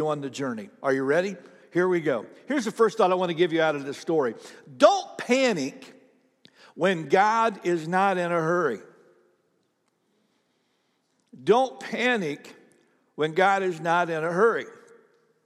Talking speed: 155 wpm